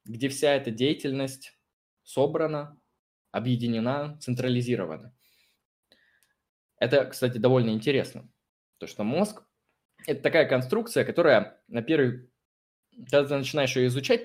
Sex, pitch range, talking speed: male, 120-145 Hz, 110 wpm